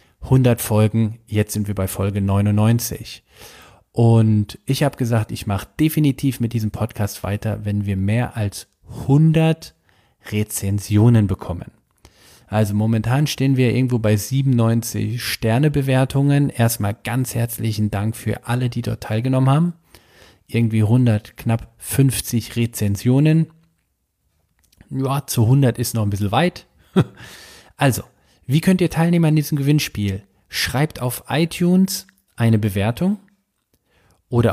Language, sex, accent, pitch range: German, male, German, 105-135 Hz